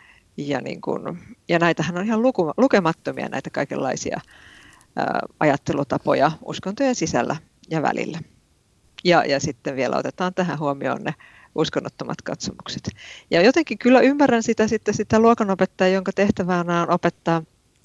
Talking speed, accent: 130 wpm, native